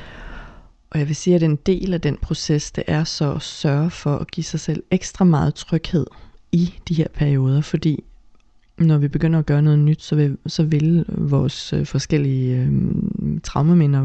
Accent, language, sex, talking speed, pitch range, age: native, Danish, female, 185 wpm, 135-160 Hz, 30-49